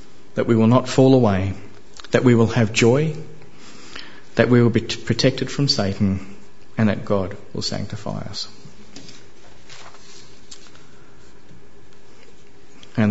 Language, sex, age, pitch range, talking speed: English, male, 40-59, 100-125 Hz, 115 wpm